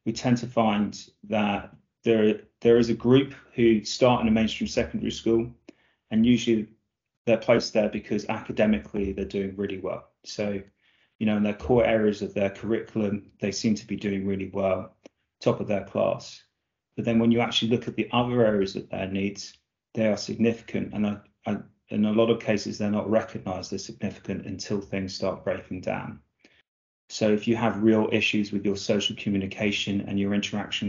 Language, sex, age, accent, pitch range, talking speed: English, male, 30-49, British, 100-115 Hz, 185 wpm